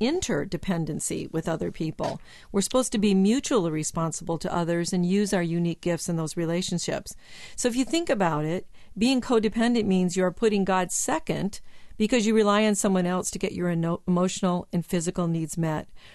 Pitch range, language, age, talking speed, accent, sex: 170-225 Hz, English, 50-69, 175 wpm, American, female